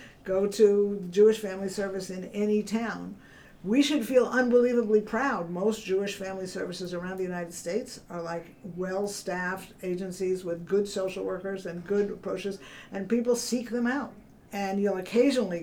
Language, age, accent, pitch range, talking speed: English, 50-69, American, 175-220 Hz, 155 wpm